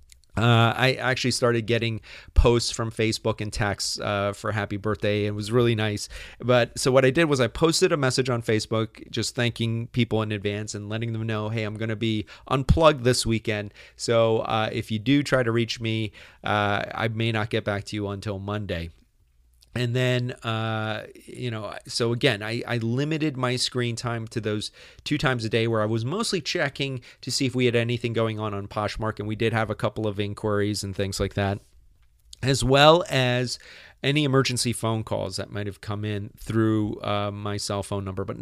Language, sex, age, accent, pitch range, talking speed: English, male, 30-49, American, 105-125 Hz, 205 wpm